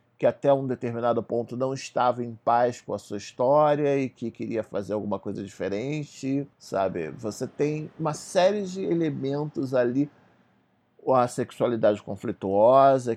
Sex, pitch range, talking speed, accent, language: male, 110-140 Hz, 140 wpm, Brazilian, Portuguese